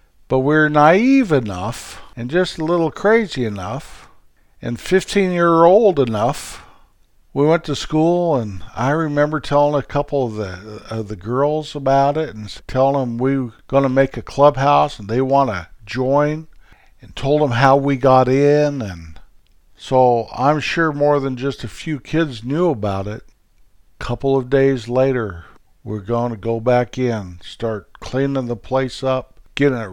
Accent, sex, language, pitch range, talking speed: American, male, English, 105-140 Hz, 165 wpm